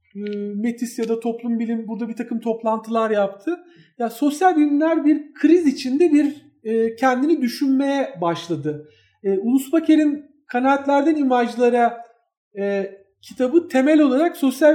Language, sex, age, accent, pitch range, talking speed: Turkish, male, 40-59, native, 200-265 Hz, 125 wpm